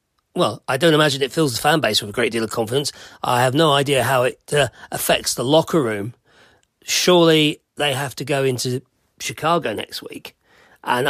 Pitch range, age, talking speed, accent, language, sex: 125-160 Hz, 40-59, 195 wpm, British, English, male